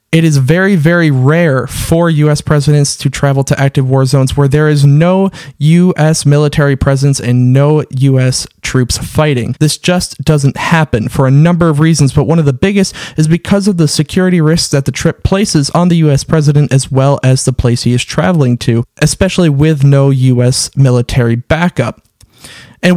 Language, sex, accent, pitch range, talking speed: English, male, American, 135-165 Hz, 185 wpm